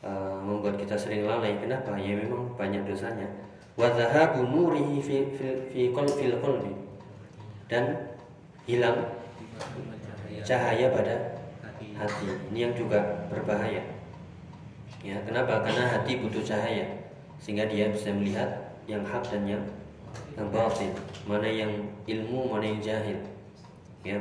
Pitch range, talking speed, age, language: 105-125 Hz, 100 wpm, 20-39, Indonesian